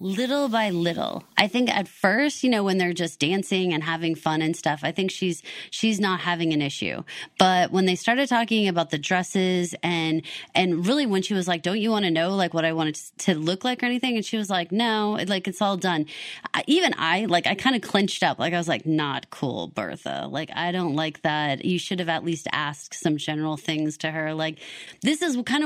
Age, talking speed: 20-39, 235 wpm